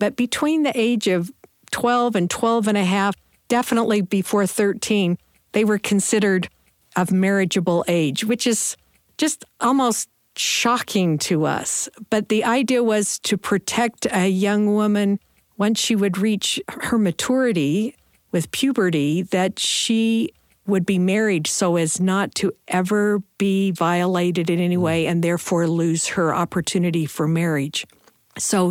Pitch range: 170-215 Hz